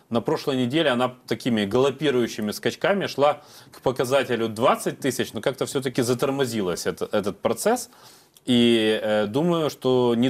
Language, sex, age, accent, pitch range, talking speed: Russian, male, 30-49, native, 105-130 Hz, 135 wpm